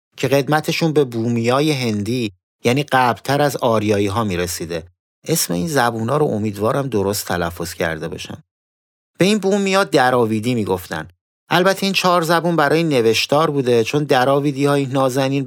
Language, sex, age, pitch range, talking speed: Persian, male, 30-49, 105-150 Hz, 145 wpm